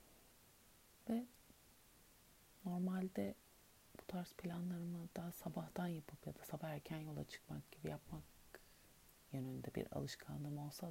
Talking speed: 110 wpm